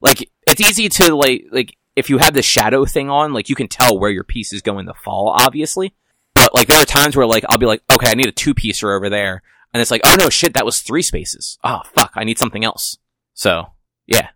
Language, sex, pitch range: English, male, 105-135 Hz